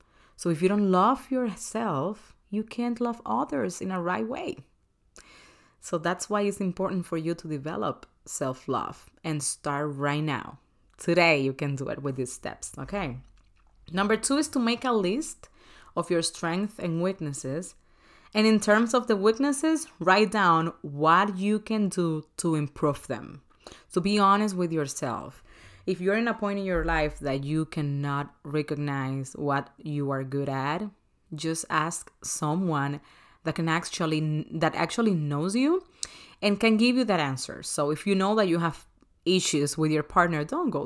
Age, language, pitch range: 30-49, Spanish, 150-205 Hz